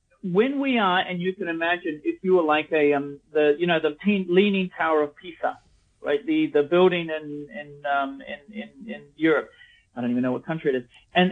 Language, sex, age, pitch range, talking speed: English, male, 40-59, 145-185 Hz, 215 wpm